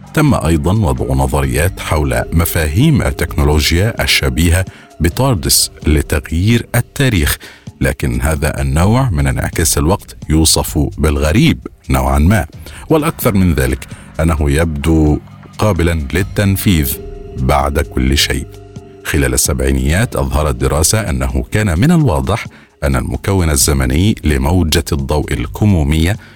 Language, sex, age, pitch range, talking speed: Arabic, male, 50-69, 70-100 Hz, 100 wpm